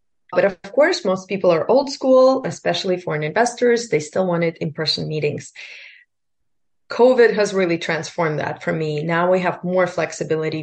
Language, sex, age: English, female, 30-49